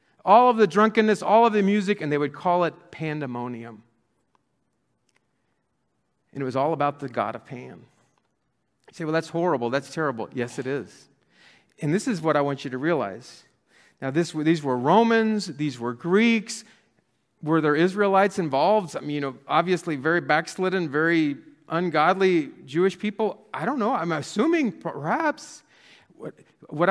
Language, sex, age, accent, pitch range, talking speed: English, male, 40-59, American, 150-220 Hz, 160 wpm